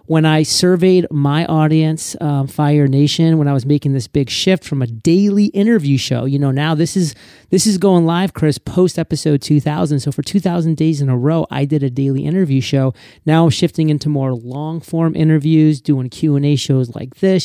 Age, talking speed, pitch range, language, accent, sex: 30-49, 195 wpm, 135-155 Hz, English, American, male